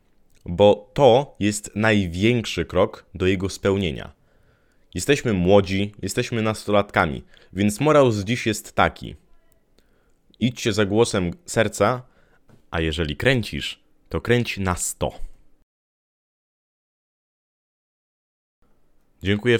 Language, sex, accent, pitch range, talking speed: Polish, male, native, 85-105 Hz, 90 wpm